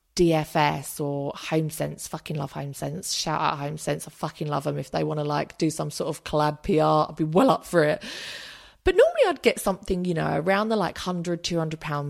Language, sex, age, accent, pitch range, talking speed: English, female, 30-49, British, 150-205 Hz, 230 wpm